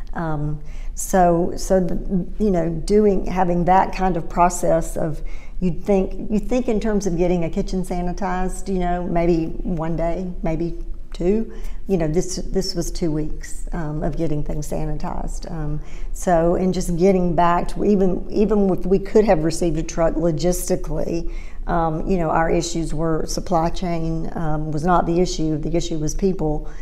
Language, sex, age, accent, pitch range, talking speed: English, female, 50-69, American, 160-185 Hz, 170 wpm